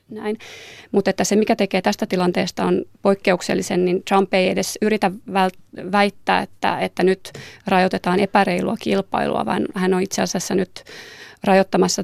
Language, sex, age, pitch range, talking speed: Finnish, female, 20-39, 185-200 Hz, 145 wpm